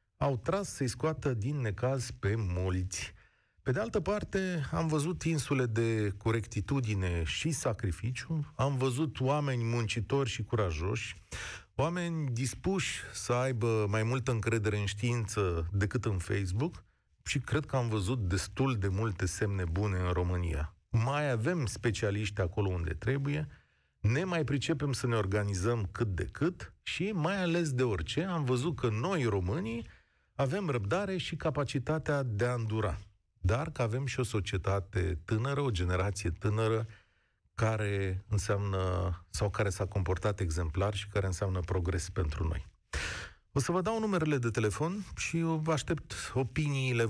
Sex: male